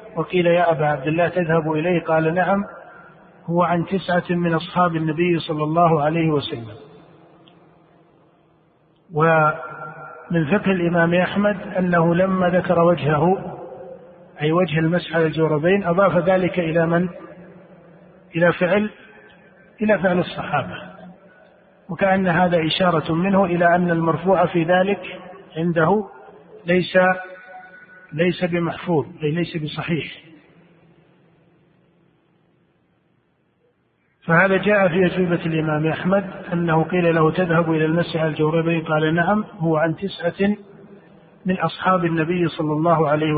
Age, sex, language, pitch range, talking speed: 50-69, male, Arabic, 165-185 Hz, 110 wpm